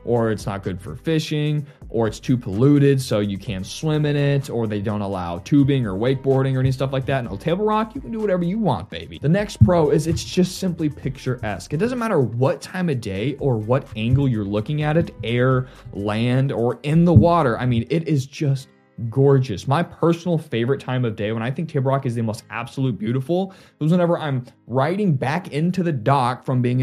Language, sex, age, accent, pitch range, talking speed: English, male, 20-39, American, 115-150 Hz, 220 wpm